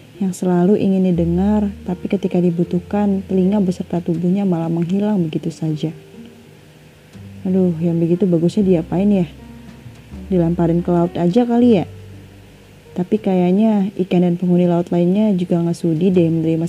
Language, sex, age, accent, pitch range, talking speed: Indonesian, female, 30-49, native, 170-210 Hz, 135 wpm